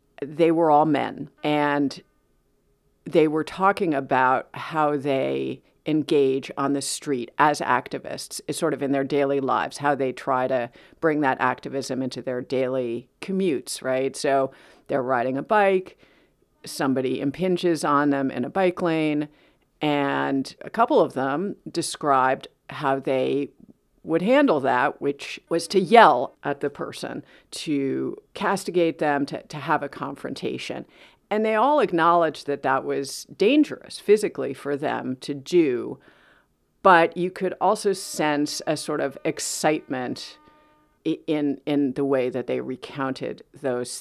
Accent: American